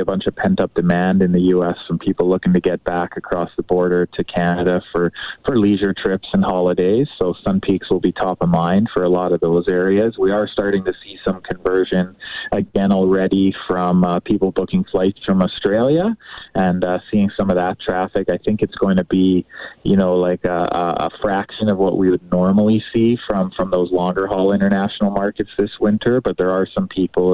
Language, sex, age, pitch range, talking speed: English, male, 20-39, 90-100 Hz, 210 wpm